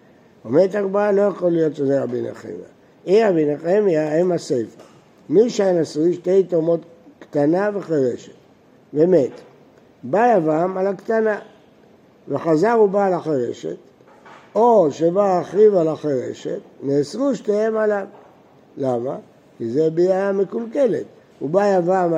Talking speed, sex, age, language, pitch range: 120 wpm, male, 60-79, Hebrew, 145-205 Hz